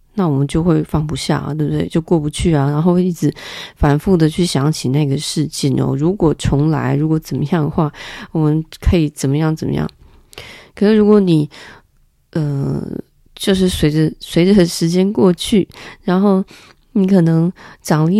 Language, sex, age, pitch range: Chinese, female, 30-49, 155-185 Hz